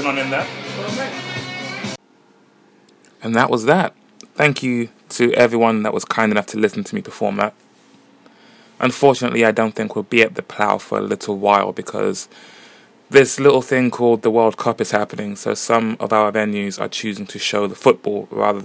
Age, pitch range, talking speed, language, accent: 20-39, 105-130 Hz, 170 wpm, English, British